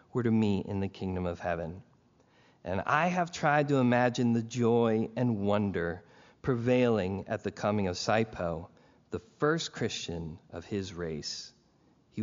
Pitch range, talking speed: 95-125 Hz, 150 wpm